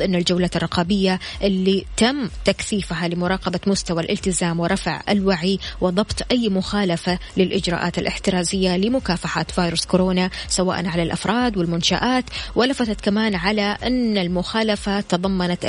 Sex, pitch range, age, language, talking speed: female, 180-210 Hz, 20-39, Arabic, 110 wpm